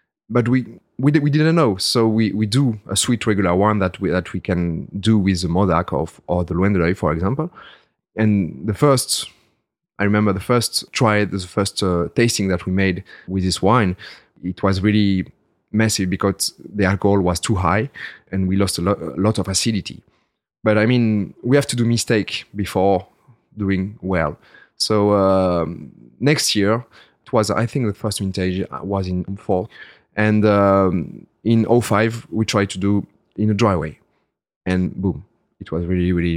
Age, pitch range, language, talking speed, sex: 30-49, 95-110 Hz, English, 180 wpm, male